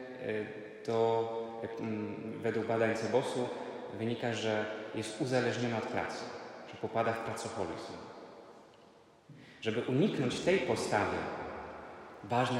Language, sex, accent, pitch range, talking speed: Polish, male, native, 110-125 Hz, 90 wpm